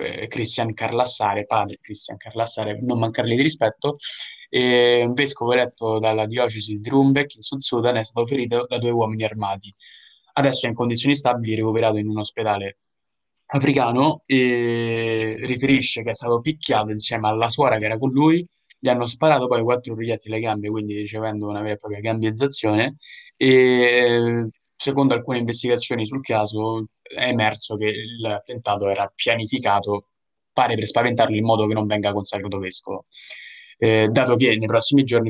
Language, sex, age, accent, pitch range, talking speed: Italian, male, 20-39, native, 105-120 Hz, 155 wpm